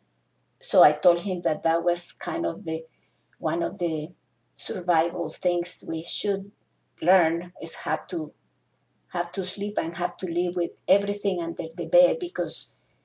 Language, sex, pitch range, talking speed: English, female, 170-200 Hz, 155 wpm